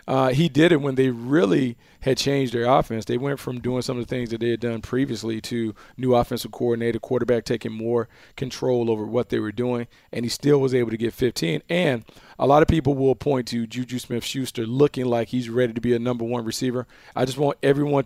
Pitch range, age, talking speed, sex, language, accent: 115-130 Hz, 40-59, 230 wpm, male, English, American